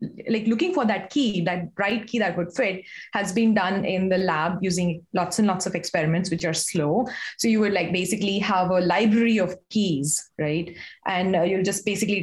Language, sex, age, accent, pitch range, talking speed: English, female, 20-39, Indian, 180-225 Hz, 205 wpm